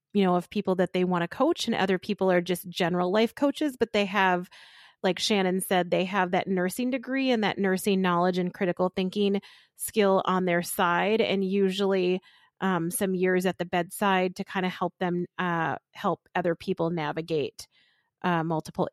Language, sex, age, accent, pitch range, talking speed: English, female, 30-49, American, 180-210 Hz, 185 wpm